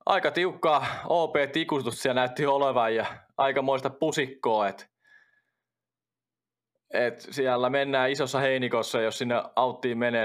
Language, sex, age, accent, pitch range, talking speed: Finnish, male, 20-39, native, 110-130 Hz, 115 wpm